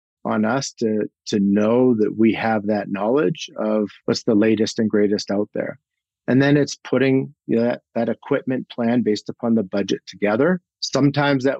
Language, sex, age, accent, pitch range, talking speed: English, male, 50-69, American, 110-130 Hz, 170 wpm